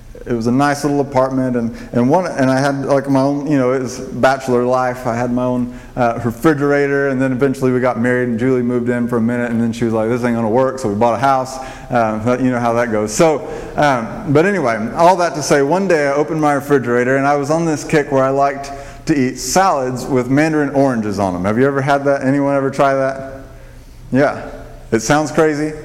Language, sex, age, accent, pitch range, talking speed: English, male, 30-49, American, 125-145 Hz, 240 wpm